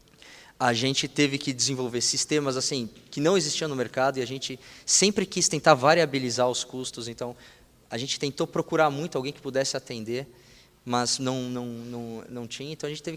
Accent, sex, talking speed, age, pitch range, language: Brazilian, male, 185 wpm, 20-39, 125-155 Hz, Portuguese